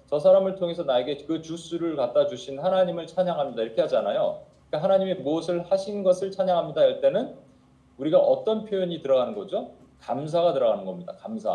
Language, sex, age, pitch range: Korean, male, 40-59, 160-205 Hz